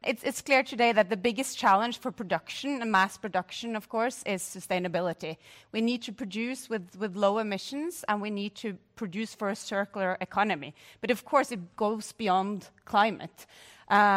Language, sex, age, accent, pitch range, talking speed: English, female, 30-49, Swedish, 185-235 Hz, 180 wpm